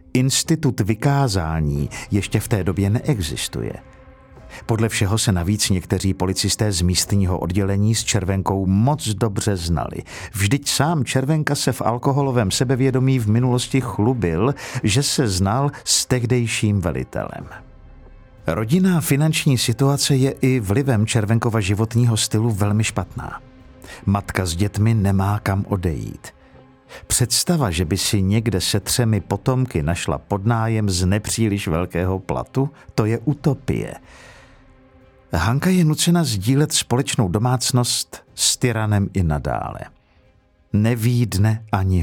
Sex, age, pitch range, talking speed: male, 50-69, 95-130 Hz, 120 wpm